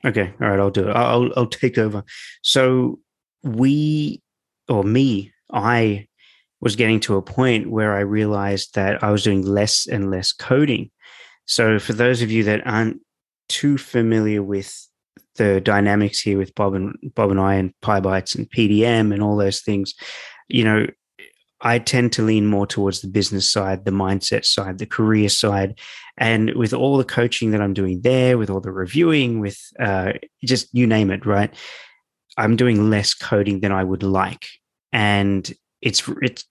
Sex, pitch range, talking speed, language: male, 100-115 Hz, 175 wpm, English